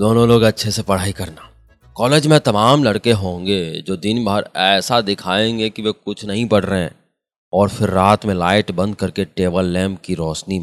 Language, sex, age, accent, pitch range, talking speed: Hindi, male, 30-49, native, 90-115 Hz, 190 wpm